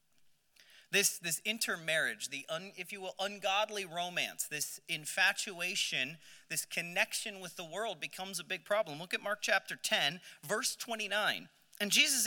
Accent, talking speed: American, 145 wpm